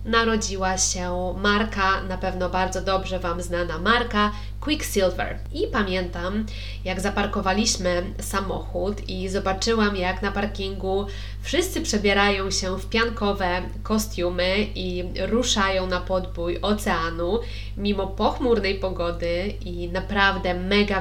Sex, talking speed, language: female, 110 wpm, Polish